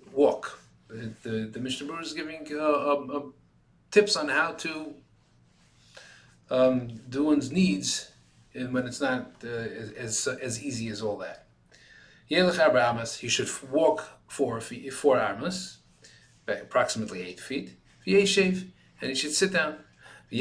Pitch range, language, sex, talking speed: 110-150 Hz, English, male, 130 wpm